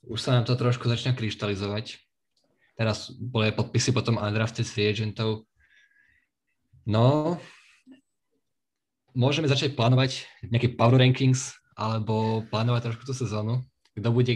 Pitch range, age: 110-125 Hz, 20-39